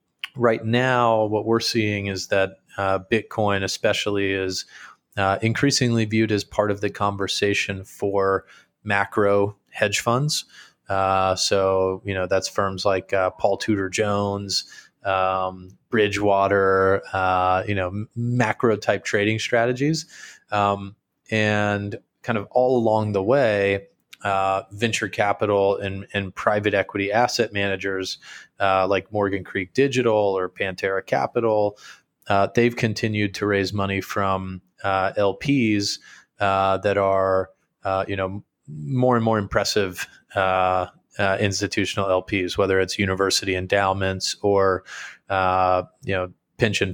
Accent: American